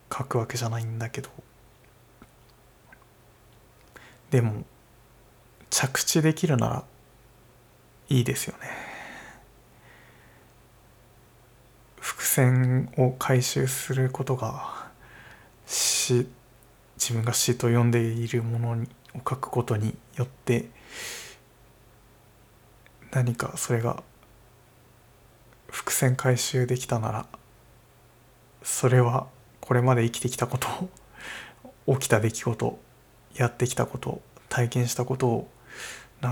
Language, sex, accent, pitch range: Japanese, male, native, 115-130 Hz